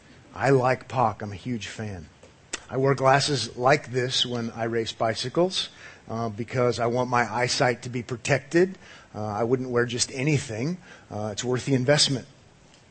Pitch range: 115-145 Hz